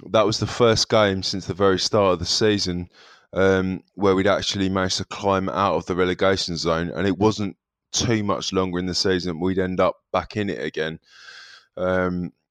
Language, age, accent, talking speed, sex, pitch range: English, 20-39, British, 195 wpm, male, 90-100 Hz